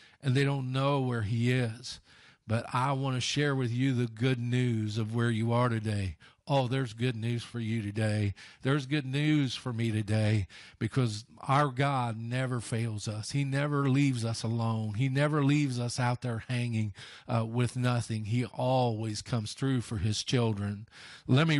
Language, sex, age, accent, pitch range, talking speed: English, male, 40-59, American, 115-140 Hz, 180 wpm